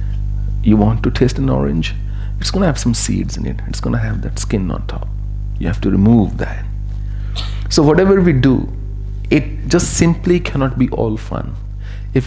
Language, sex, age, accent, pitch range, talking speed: English, male, 40-59, Indian, 100-105 Hz, 190 wpm